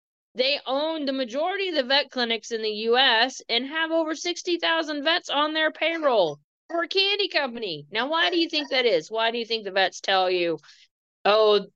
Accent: American